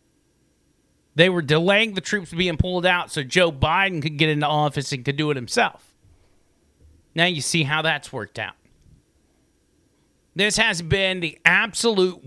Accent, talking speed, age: American, 155 wpm, 40-59